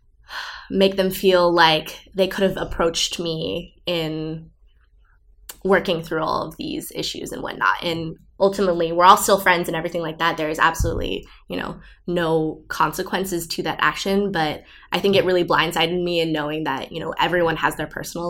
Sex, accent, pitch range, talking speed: female, American, 160-190 Hz, 175 wpm